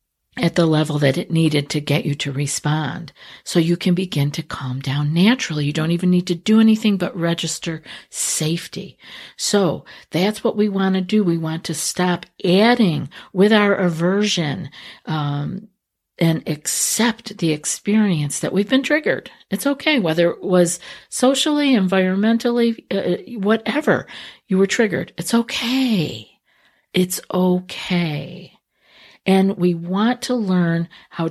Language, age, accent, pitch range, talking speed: English, 50-69, American, 160-205 Hz, 145 wpm